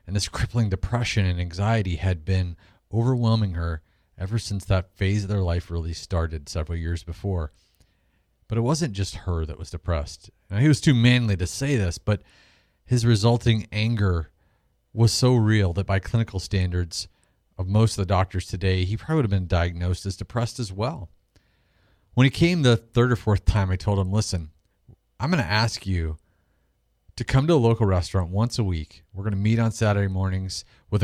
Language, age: English, 40-59